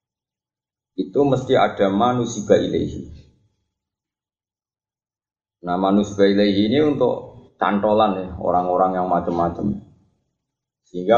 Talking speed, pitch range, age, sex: 80 wpm, 90-105 Hz, 20-39, male